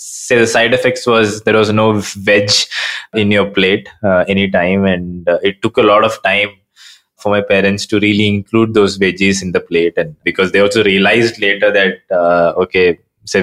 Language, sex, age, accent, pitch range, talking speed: English, male, 20-39, Indian, 95-115 Hz, 190 wpm